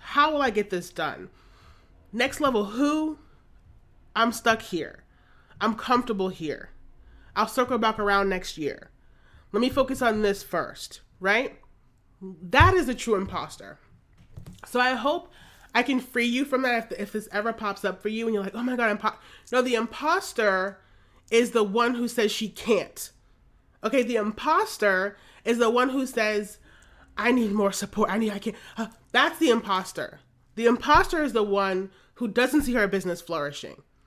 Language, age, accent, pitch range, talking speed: English, 30-49, American, 200-255 Hz, 175 wpm